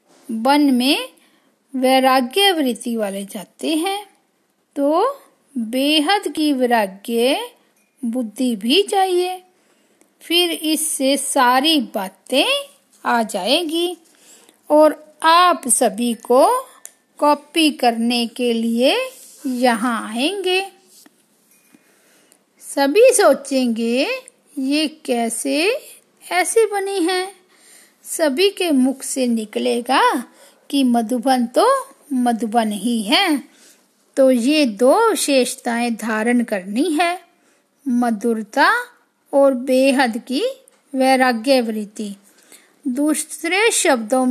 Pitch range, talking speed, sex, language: 245-320 Hz, 85 wpm, female, Hindi